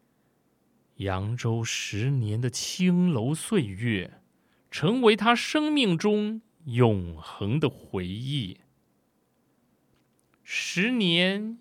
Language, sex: Chinese, male